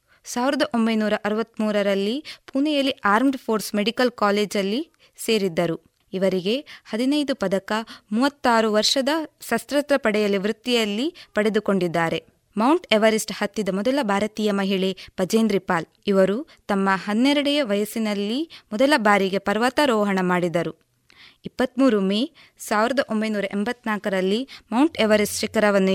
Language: Kannada